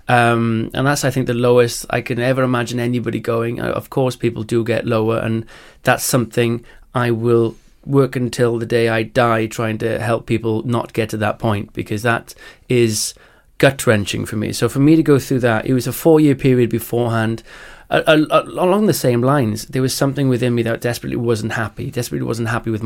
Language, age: English, 30-49